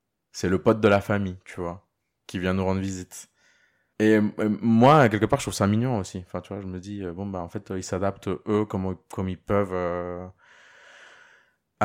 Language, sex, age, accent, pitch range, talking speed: French, male, 20-39, French, 85-110 Hz, 210 wpm